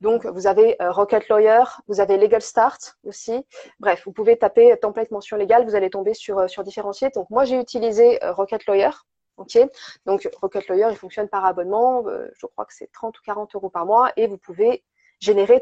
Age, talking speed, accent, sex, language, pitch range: 20-39, 195 wpm, French, female, French, 195-250 Hz